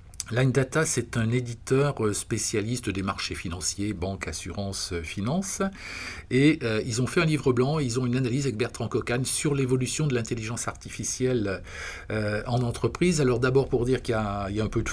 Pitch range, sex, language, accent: 100-125 Hz, male, French, French